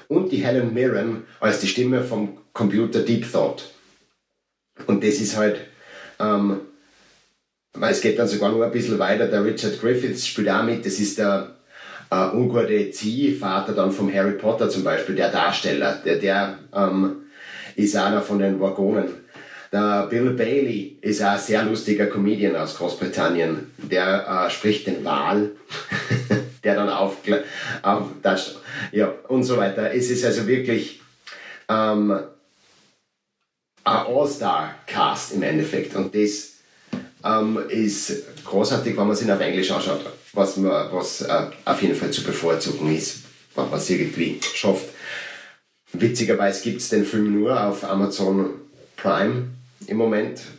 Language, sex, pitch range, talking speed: German, male, 100-110 Hz, 145 wpm